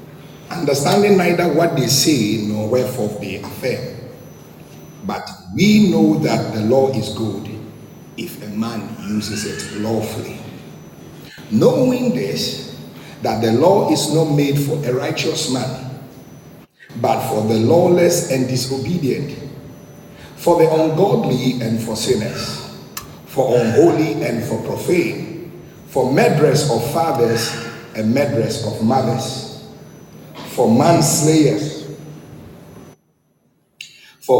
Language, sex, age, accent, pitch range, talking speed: English, male, 50-69, Nigerian, 115-160 Hz, 110 wpm